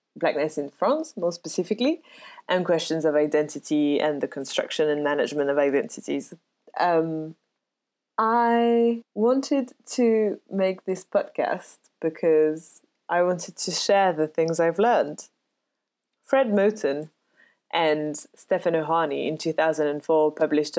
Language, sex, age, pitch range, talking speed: English, female, 20-39, 155-195 Hz, 125 wpm